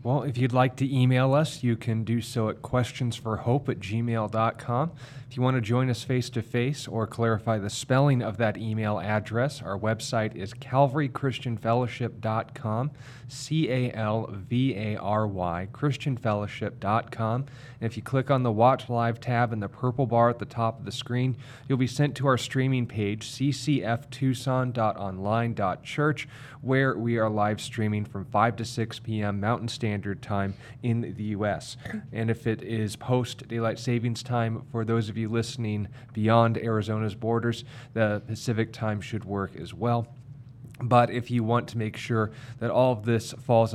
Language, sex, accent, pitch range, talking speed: English, male, American, 110-125 Hz, 155 wpm